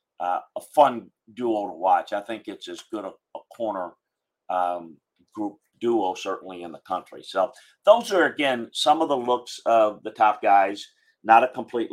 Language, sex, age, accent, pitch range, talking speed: English, male, 50-69, American, 100-130 Hz, 180 wpm